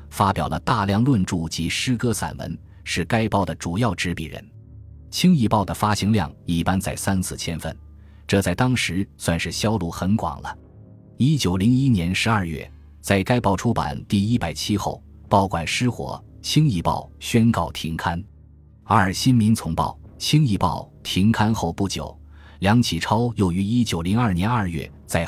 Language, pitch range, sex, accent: Chinese, 80-110 Hz, male, native